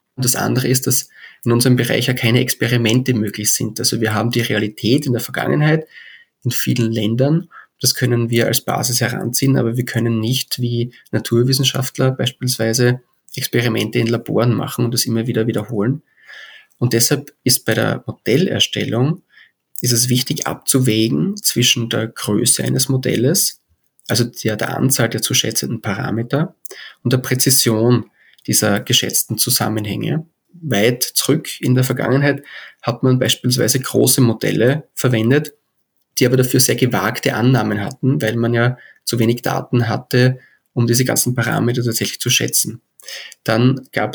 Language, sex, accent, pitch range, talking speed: German, male, German, 115-130 Hz, 145 wpm